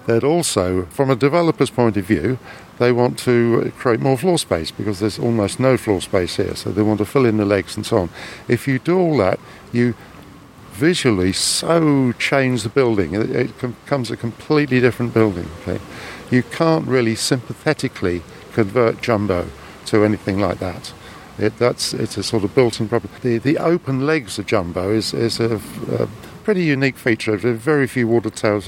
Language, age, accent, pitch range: English, 50-69, British, 105-130 Hz